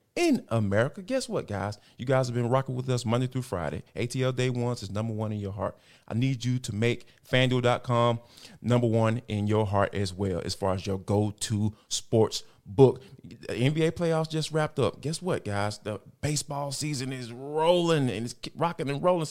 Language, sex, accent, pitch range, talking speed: English, male, American, 115-160 Hz, 195 wpm